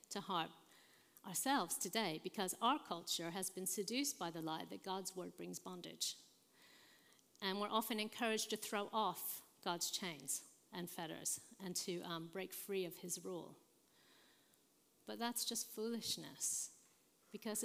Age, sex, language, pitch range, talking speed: 50-69, female, English, 180-225 Hz, 145 wpm